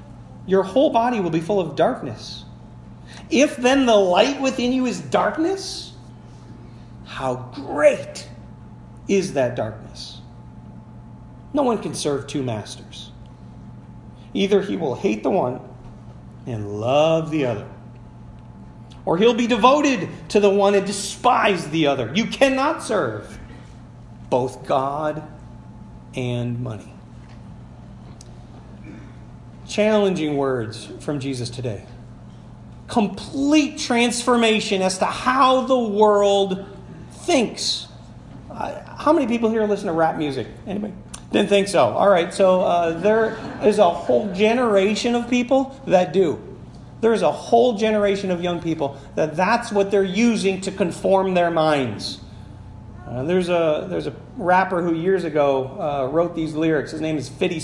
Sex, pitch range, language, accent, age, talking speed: male, 140-220 Hz, English, American, 40-59, 130 wpm